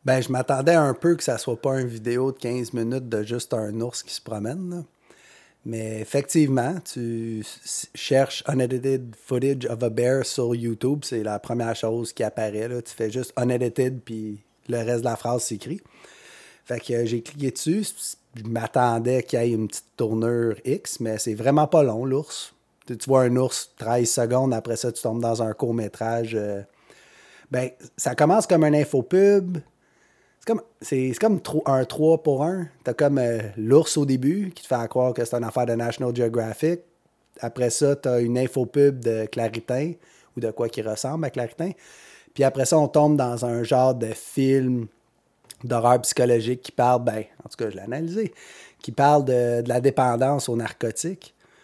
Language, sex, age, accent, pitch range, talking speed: French, male, 30-49, Canadian, 115-140 Hz, 190 wpm